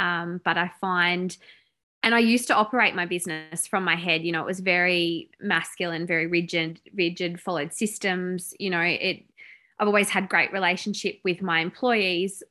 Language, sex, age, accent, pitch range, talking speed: English, female, 20-39, Australian, 175-205 Hz, 175 wpm